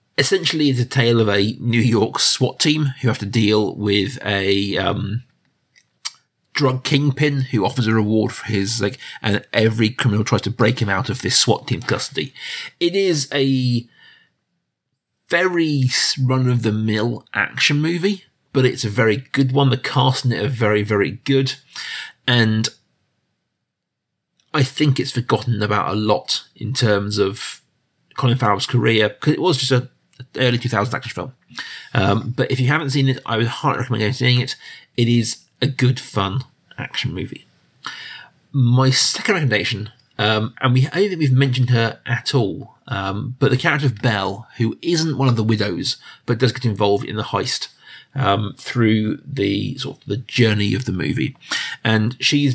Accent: British